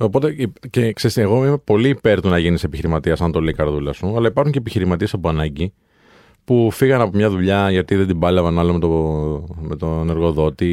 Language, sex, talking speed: Greek, male, 200 wpm